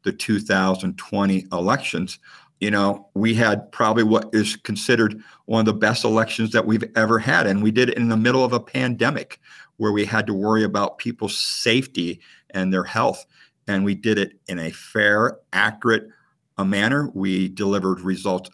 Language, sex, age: English, male, 50-69